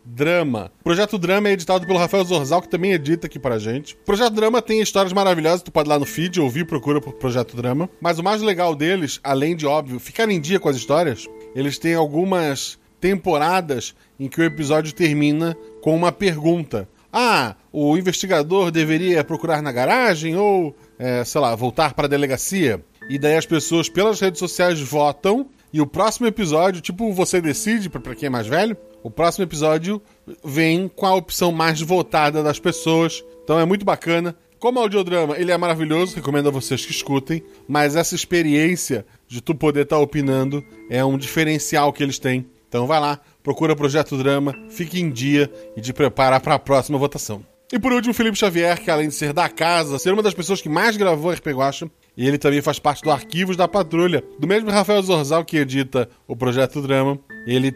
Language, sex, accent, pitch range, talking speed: Portuguese, male, Brazilian, 140-180 Hz, 195 wpm